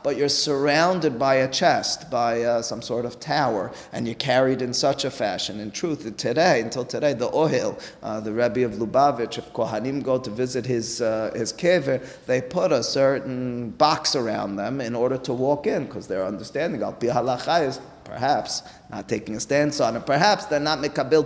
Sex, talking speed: male, 185 wpm